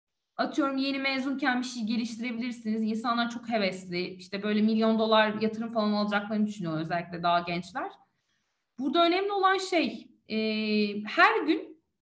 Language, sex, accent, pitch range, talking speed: Turkish, female, native, 210-300 Hz, 135 wpm